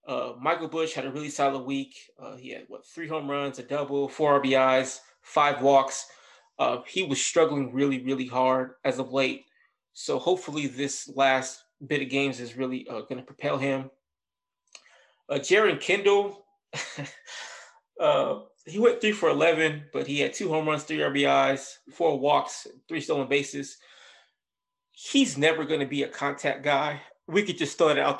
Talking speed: 170 wpm